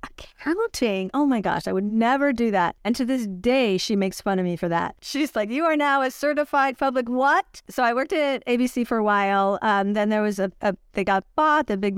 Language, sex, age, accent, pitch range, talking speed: English, female, 40-59, American, 190-225 Hz, 240 wpm